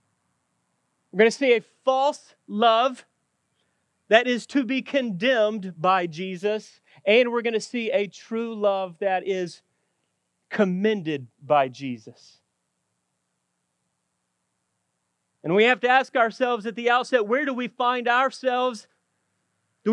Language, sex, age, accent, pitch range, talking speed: English, male, 30-49, American, 170-245 Hz, 125 wpm